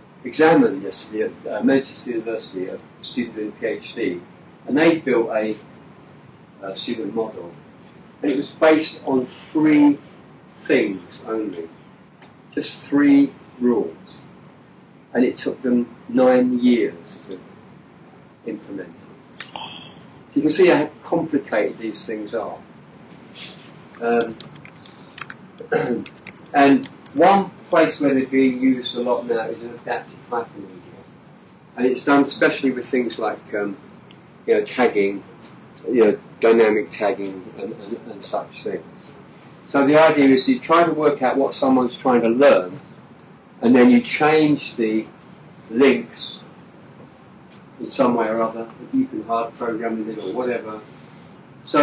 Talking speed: 130 wpm